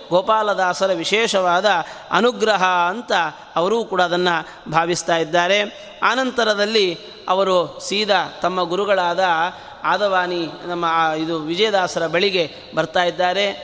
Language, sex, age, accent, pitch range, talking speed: Kannada, male, 30-49, native, 190-235 Hz, 90 wpm